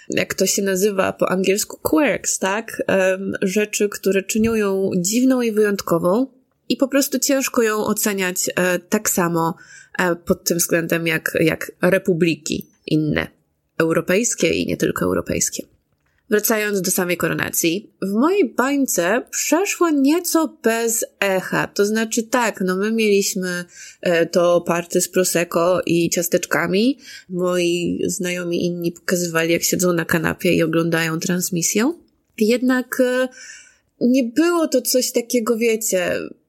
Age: 20-39